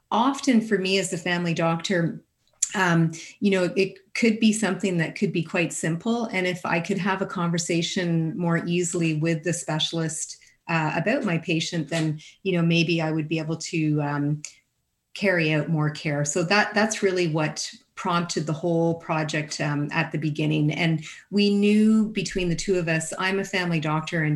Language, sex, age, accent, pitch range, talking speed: English, female, 30-49, American, 155-185 Hz, 185 wpm